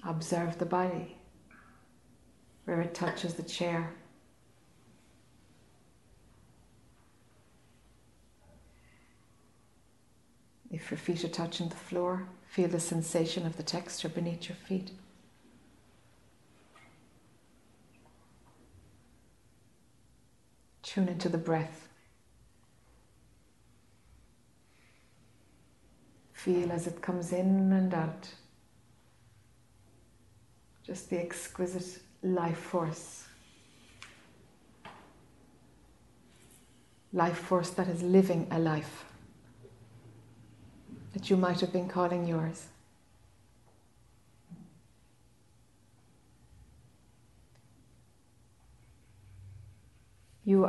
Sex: female